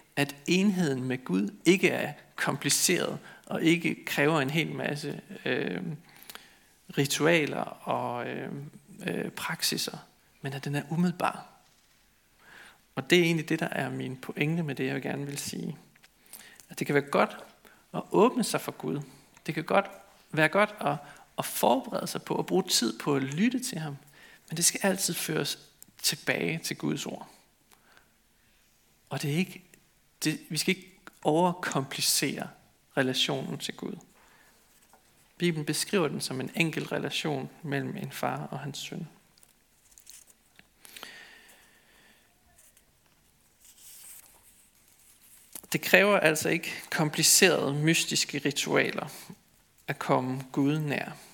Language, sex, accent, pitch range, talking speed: Danish, male, native, 140-180 Hz, 130 wpm